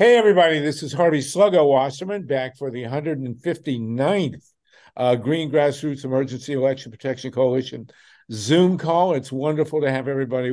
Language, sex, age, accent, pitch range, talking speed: English, male, 60-79, American, 125-155 Hz, 140 wpm